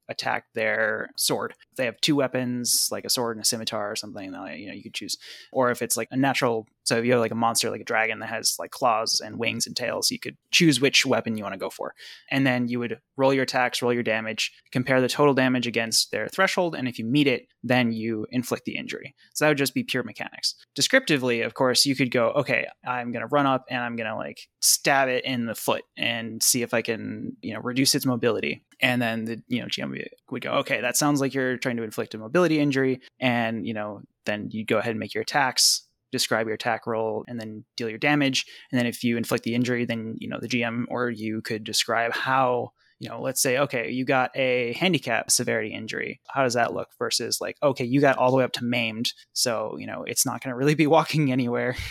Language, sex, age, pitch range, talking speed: English, male, 20-39, 115-135 Hz, 245 wpm